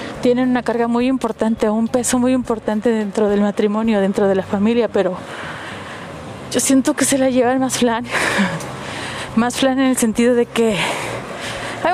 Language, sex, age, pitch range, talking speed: Spanish, female, 30-49, 205-255 Hz, 165 wpm